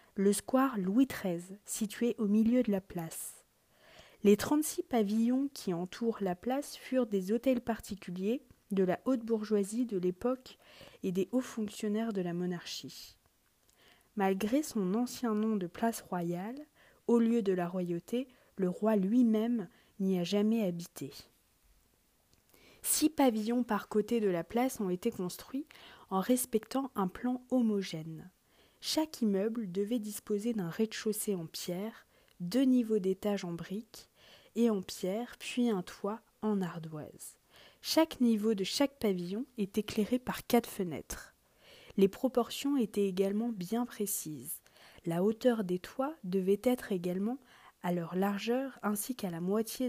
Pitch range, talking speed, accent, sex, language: 190-240 Hz, 145 wpm, French, female, French